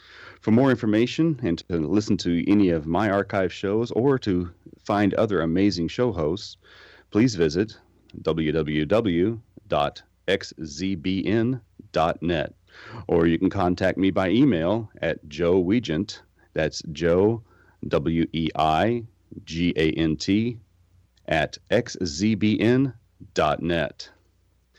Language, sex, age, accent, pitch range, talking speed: English, male, 40-59, American, 85-110 Hz, 90 wpm